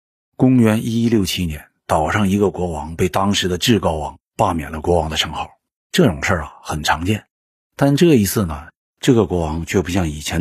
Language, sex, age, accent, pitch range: Chinese, male, 50-69, native, 80-120 Hz